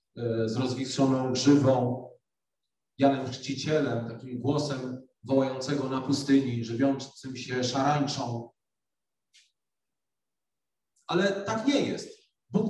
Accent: native